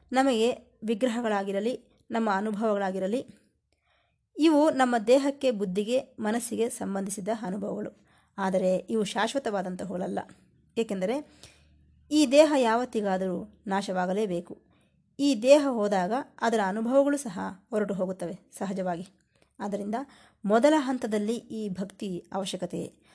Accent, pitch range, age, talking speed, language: native, 190-255 Hz, 20-39, 85 wpm, Kannada